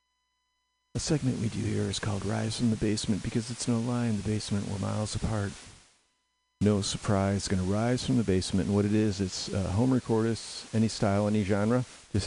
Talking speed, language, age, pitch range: 205 wpm, English, 50-69, 95-140 Hz